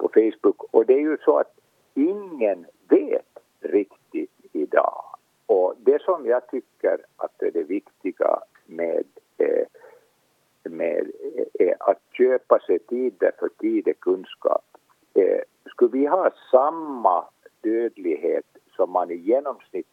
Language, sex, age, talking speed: Swedish, male, 50-69, 135 wpm